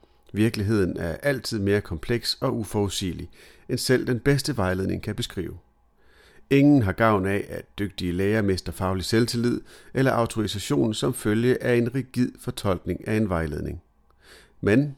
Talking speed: 145 wpm